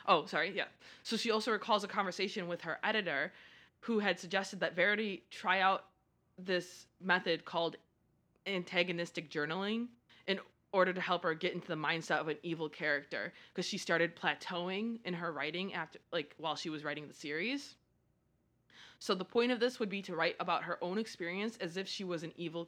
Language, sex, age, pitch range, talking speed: English, female, 20-39, 170-205 Hz, 190 wpm